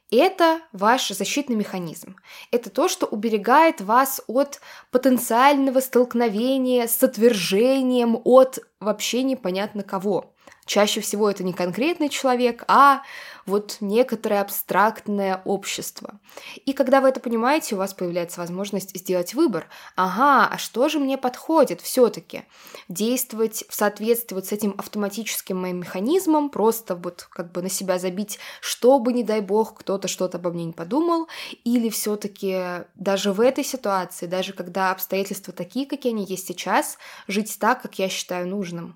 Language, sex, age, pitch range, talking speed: Russian, female, 20-39, 190-250 Hz, 145 wpm